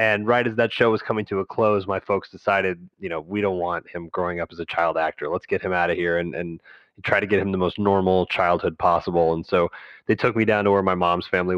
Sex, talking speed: male, 275 wpm